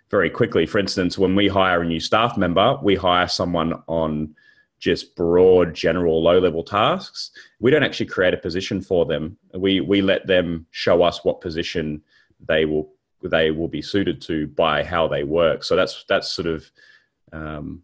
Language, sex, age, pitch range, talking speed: English, male, 30-49, 80-100 Hz, 180 wpm